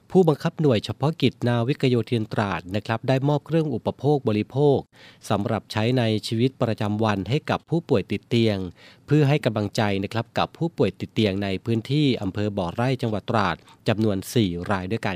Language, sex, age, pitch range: Thai, male, 30-49, 105-125 Hz